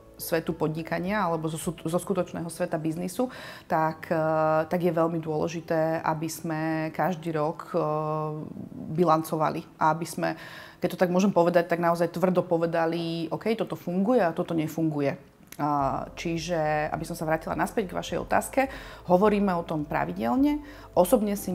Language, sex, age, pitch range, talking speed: Slovak, female, 30-49, 155-180 Hz, 140 wpm